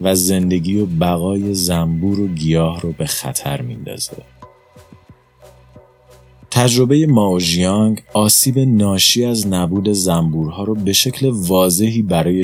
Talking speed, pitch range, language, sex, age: 110 wpm, 85-105 Hz, Persian, male, 30-49